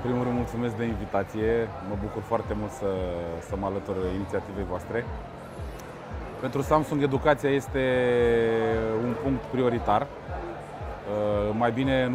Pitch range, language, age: 110-135 Hz, Romanian, 20-39